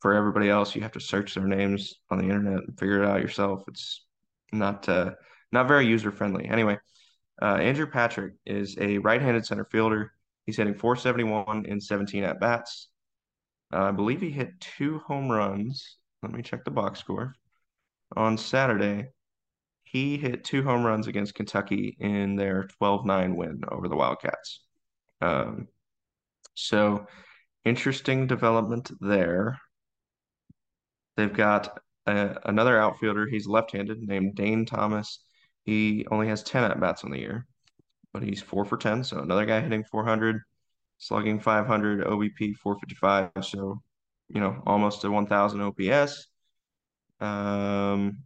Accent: American